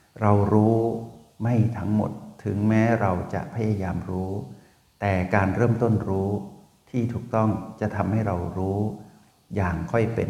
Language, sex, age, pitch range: Thai, male, 60-79, 95-110 Hz